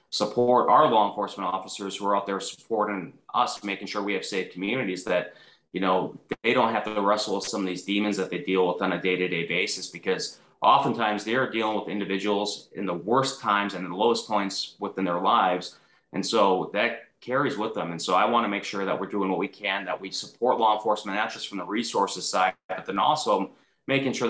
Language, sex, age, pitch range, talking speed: English, male, 30-49, 95-105 Hz, 225 wpm